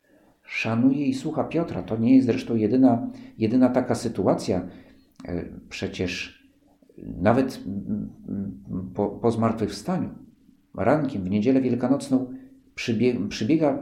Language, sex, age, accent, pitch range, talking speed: Polish, male, 50-69, native, 100-145 Hz, 95 wpm